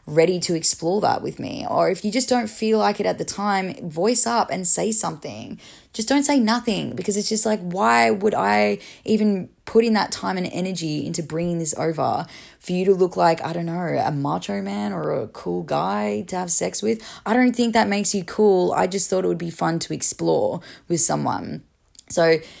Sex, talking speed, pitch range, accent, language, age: female, 220 wpm, 155-195 Hz, Australian, English, 10-29